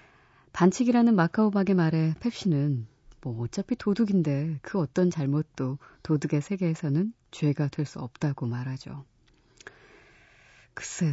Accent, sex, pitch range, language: native, female, 140-195 Hz, Korean